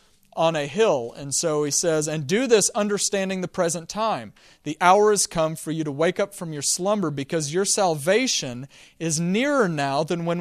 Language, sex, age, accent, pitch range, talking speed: English, male, 40-59, American, 160-205 Hz, 195 wpm